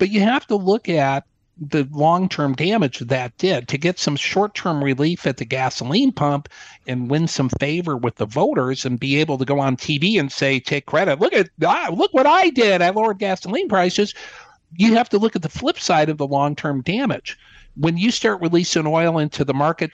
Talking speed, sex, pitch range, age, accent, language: 210 wpm, male, 140-175 Hz, 60-79, American, English